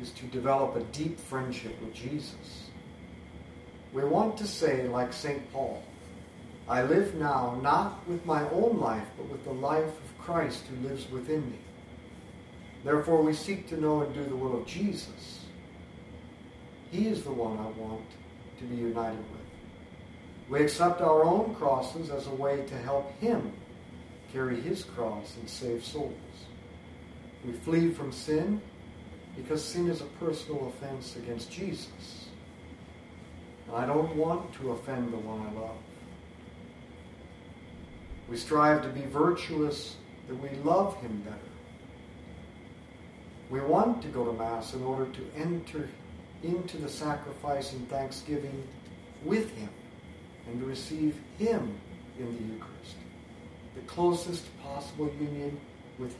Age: 50-69